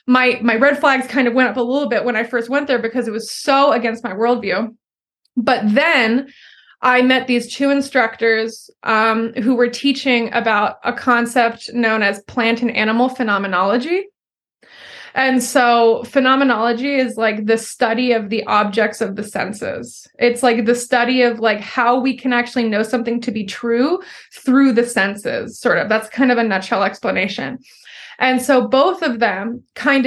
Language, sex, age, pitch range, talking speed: English, female, 20-39, 225-255 Hz, 175 wpm